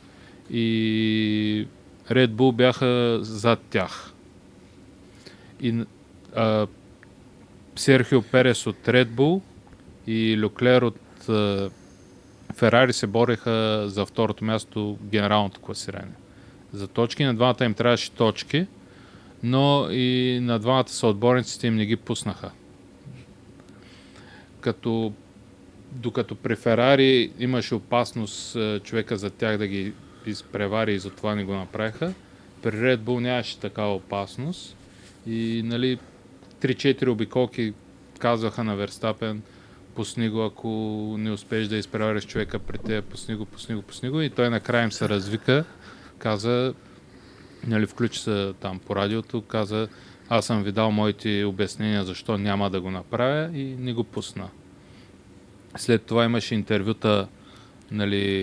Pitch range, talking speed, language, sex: 100-120 Hz, 120 wpm, Bulgarian, male